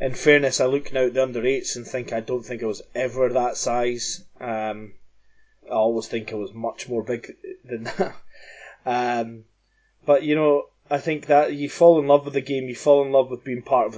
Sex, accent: male, British